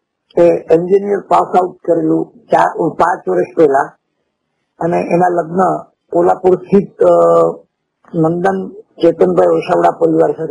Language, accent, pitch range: Gujarati, native, 175-215 Hz